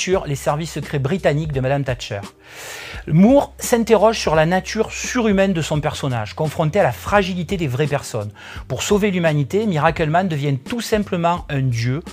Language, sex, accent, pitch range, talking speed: French, male, French, 140-195 Hz, 165 wpm